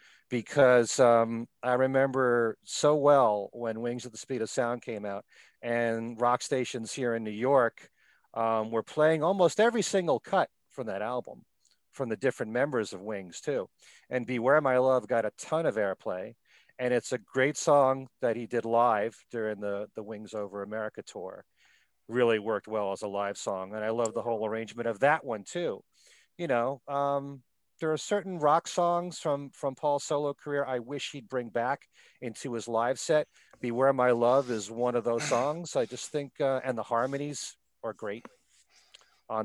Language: English